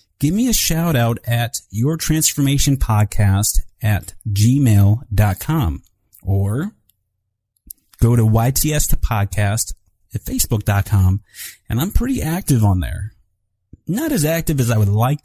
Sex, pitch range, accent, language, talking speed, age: male, 95-130 Hz, American, English, 125 wpm, 30-49